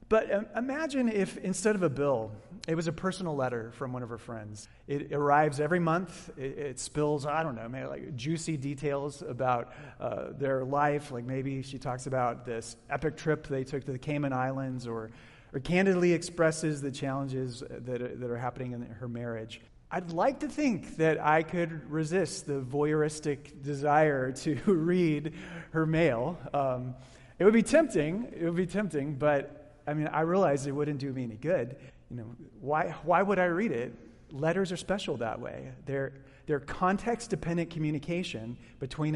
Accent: American